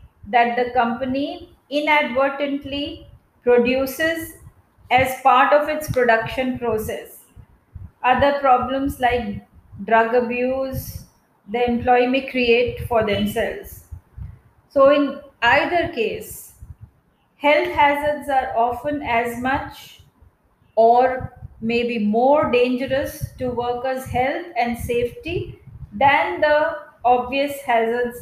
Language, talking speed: English, 95 wpm